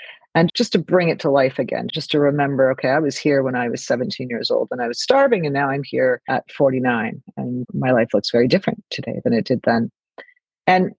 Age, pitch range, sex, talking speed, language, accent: 40-59, 130-180 Hz, female, 235 wpm, English, American